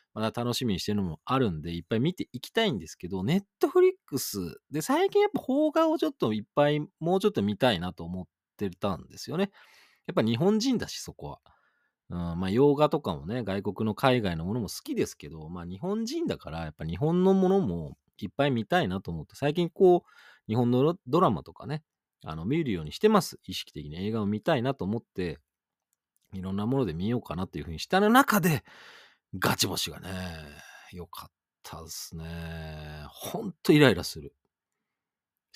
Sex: male